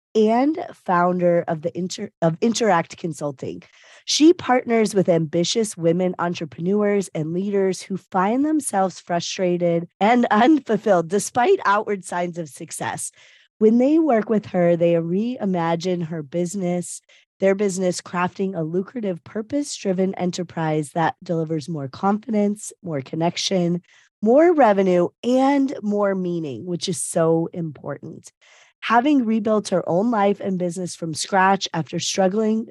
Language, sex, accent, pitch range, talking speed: English, female, American, 165-210 Hz, 130 wpm